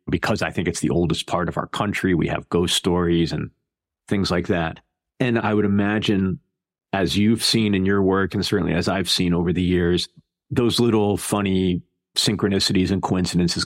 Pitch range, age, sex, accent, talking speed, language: 90-110 Hz, 40-59, male, American, 185 wpm, English